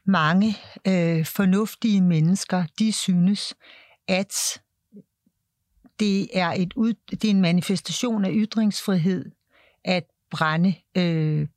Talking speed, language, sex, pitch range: 105 wpm, Danish, female, 185-230 Hz